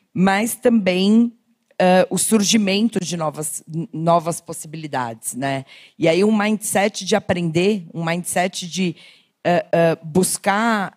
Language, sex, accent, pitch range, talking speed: Portuguese, female, Brazilian, 160-190 Hz, 120 wpm